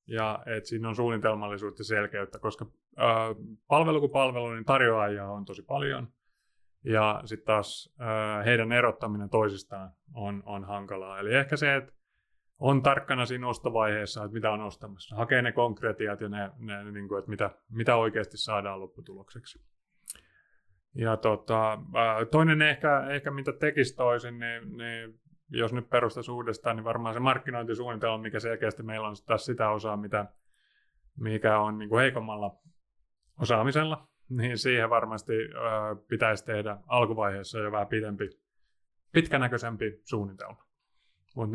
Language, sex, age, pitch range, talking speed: Finnish, male, 30-49, 110-130 Hz, 135 wpm